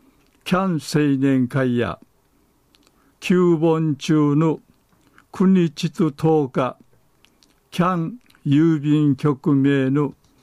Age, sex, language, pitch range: 60-79, male, Japanese, 130-160 Hz